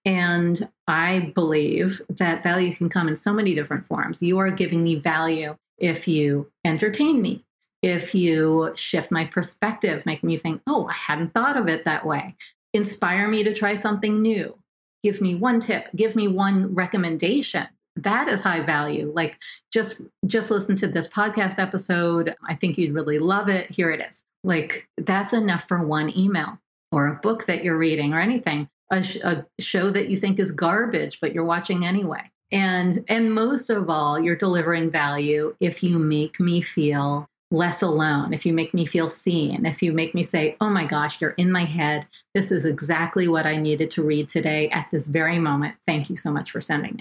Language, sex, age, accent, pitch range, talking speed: English, female, 40-59, American, 160-195 Hz, 190 wpm